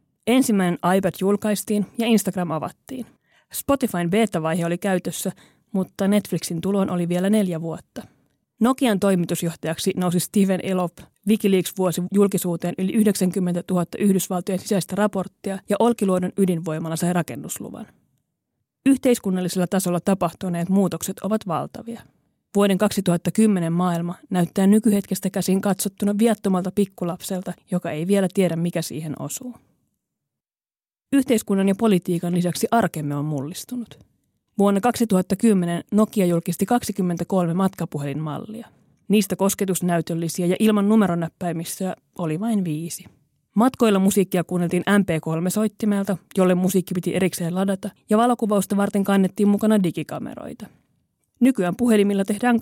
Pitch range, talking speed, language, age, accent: 175-205 Hz, 110 wpm, Finnish, 30-49, native